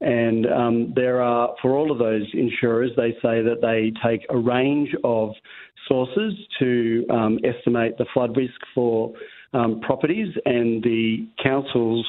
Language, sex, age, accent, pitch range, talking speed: English, male, 40-59, Australian, 115-125 Hz, 150 wpm